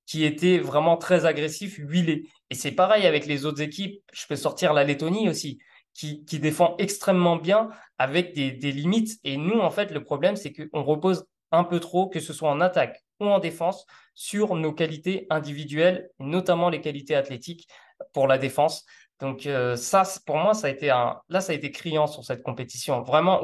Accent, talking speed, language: French, 195 wpm, French